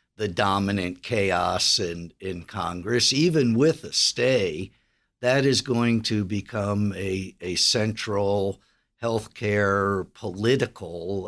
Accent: American